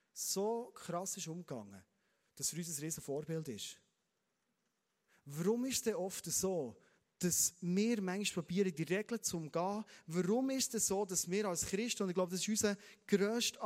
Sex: male